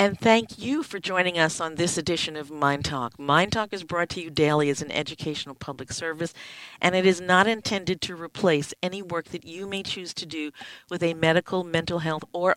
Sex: female